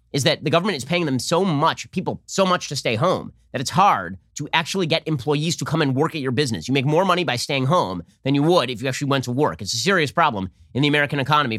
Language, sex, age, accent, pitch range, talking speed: English, male, 30-49, American, 125-170 Hz, 275 wpm